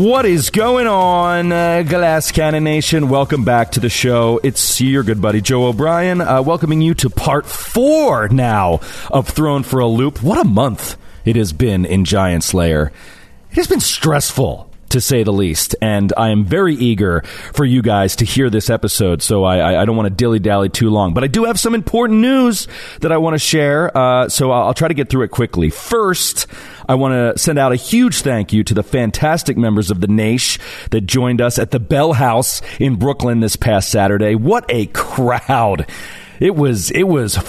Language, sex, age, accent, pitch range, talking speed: English, male, 40-59, American, 105-135 Hz, 200 wpm